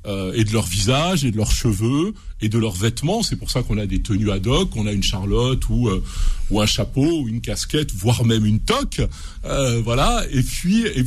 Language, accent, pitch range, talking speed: French, French, 110-165 Hz, 235 wpm